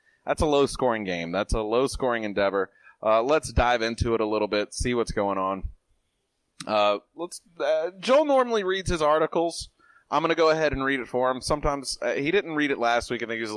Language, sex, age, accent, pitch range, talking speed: English, male, 30-49, American, 110-155 Hz, 215 wpm